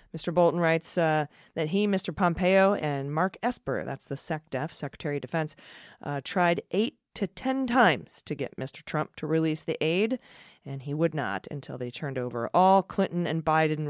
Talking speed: 185 wpm